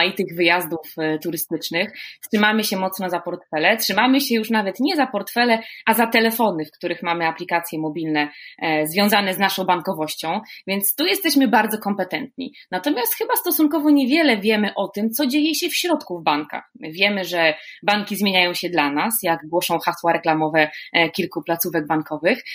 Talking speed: 160 wpm